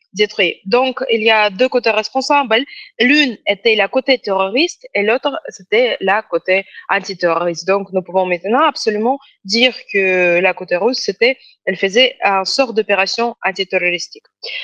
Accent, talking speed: French, 150 wpm